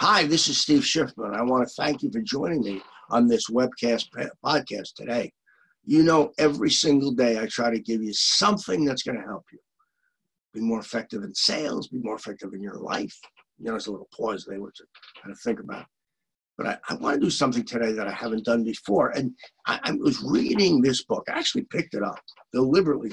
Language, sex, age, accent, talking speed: English, male, 50-69, American, 215 wpm